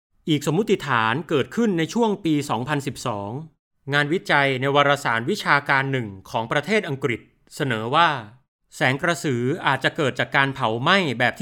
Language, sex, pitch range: Thai, male, 125-170 Hz